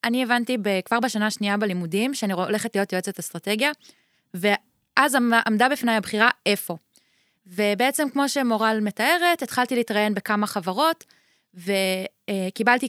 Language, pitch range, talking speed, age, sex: Hebrew, 205-270 Hz, 115 wpm, 20-39, female